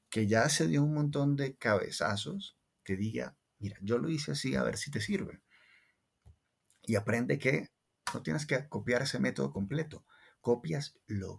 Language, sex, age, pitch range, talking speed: English, male, 30-49, 100-130 Hz, 170 wpm